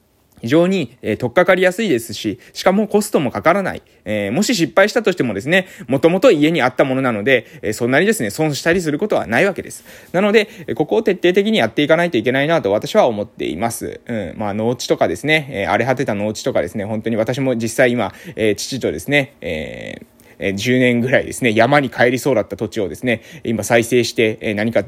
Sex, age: male, 20-39